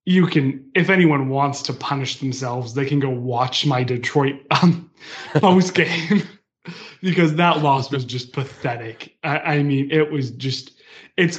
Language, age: English, 20-39